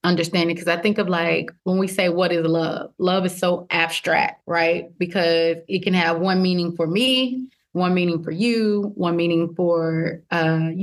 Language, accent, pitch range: English, American, 170-215 Hz